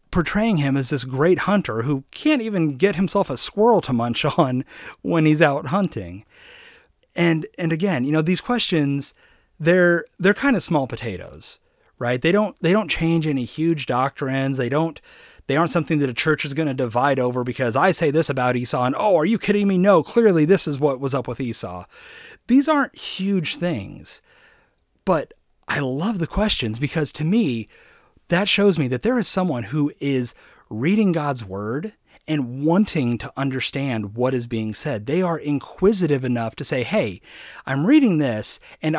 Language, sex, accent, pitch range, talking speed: English, male, American, 135-195 Hz, 185 wpm